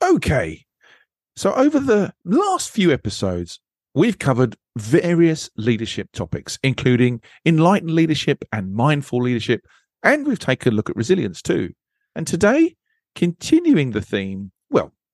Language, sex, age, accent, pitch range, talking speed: English, male, 40-59, British, 105-165 Hz, 125 wpm